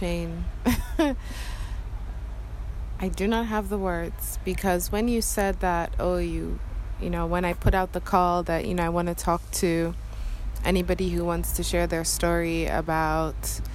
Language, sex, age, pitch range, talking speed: English, female, 20-39, 160-190 Hz, 160 wpm